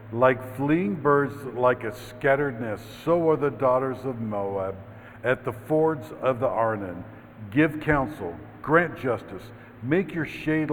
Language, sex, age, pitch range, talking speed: English, male, 60-79, 110-140 Hz, 145 wpm